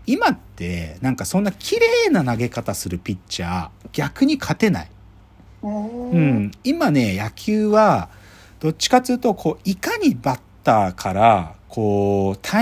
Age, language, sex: 40-59, Japanese, male